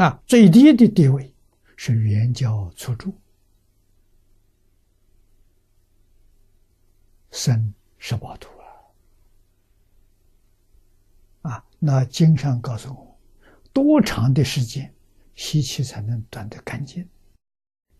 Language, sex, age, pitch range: Chinese, male, 60-79, 100-135 Hz